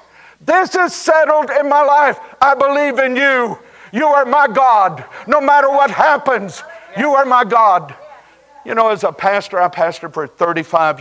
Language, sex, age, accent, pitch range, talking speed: English, male, 60-79, American, 130-205 Hz, 170 wpm